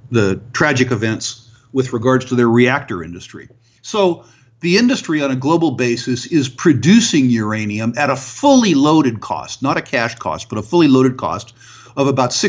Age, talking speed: 50-69, 170 wpm